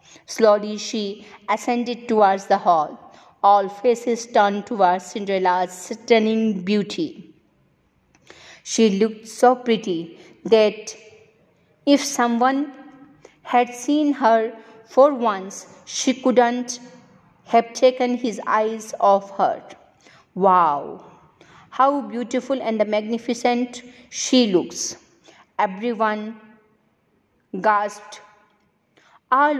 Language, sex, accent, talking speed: English, female, Indian, 85 wpm